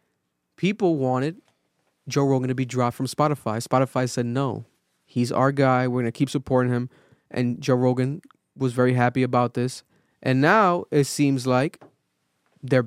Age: 20-39